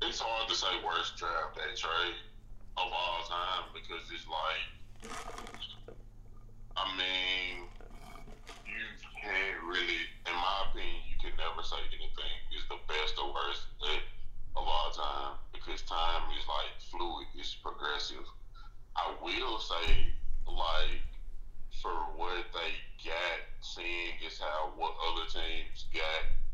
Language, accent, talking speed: English, American, 130 wpm